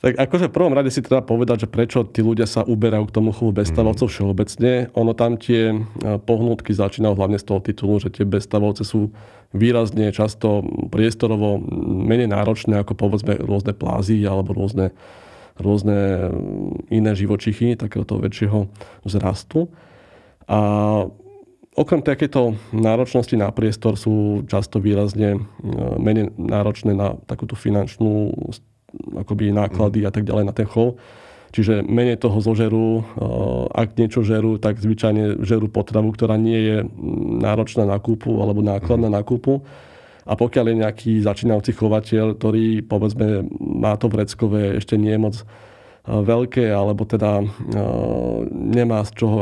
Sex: male